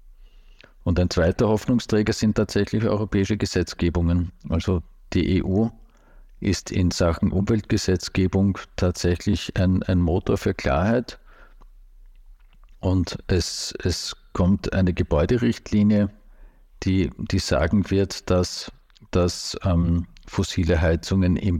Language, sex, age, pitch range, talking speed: German, male, 50-69, 85-100 Hz, 105 wpm